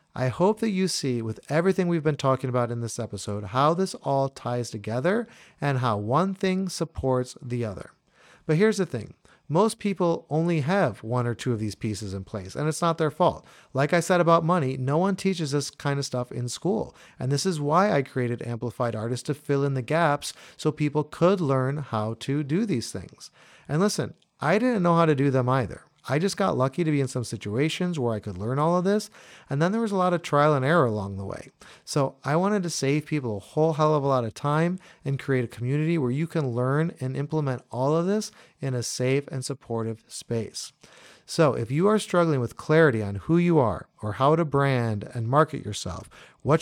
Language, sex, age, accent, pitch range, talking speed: English, male, 40-59, American, 125-165 Hz, 225 wpm